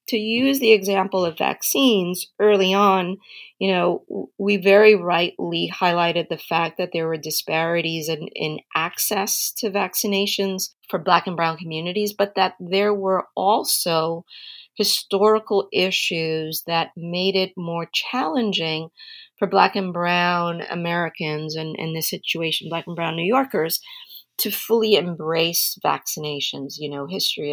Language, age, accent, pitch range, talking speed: English, 40-59, American, 165-210 Hz, 135 wpm